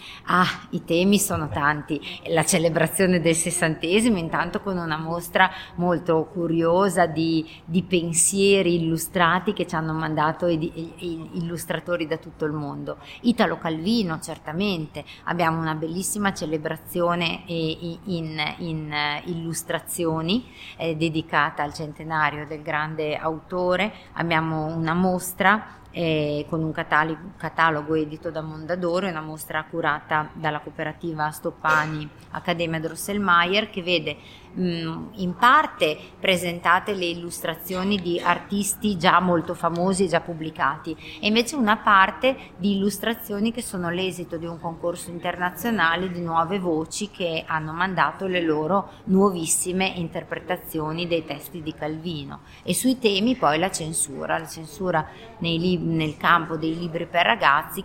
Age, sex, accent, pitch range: 30-49, female, native, 160-180 Hz